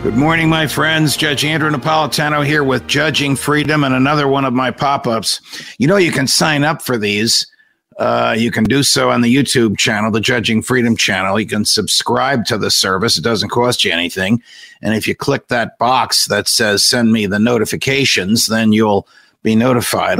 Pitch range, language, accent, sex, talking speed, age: 115-140 Hz, English, American, male, 195 wpm, 50-69